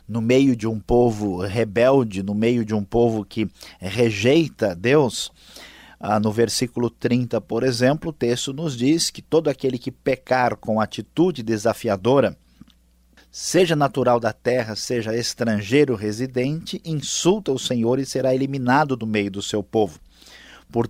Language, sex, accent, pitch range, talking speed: Portuguese, male, Brazilian, 105-130 Hz, 145 wpm